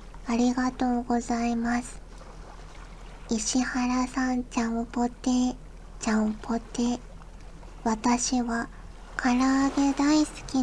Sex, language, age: male, Japanese, 40-59